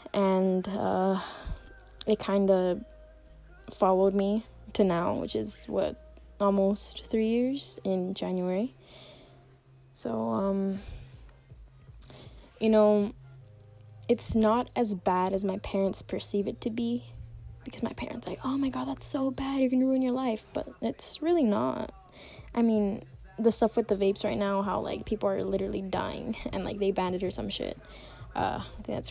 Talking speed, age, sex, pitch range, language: 160 wpm, 10-29, female, 175-220 Hz, English